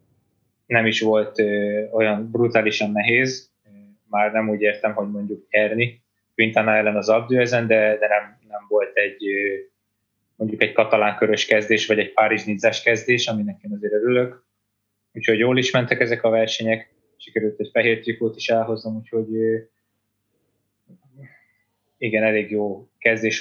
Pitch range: 105-115 Hz